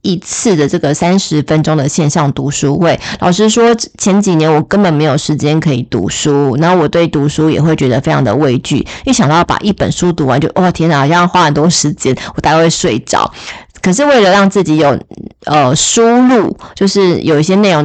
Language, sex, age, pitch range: Chinese, female, 20-39, 150-185 Hz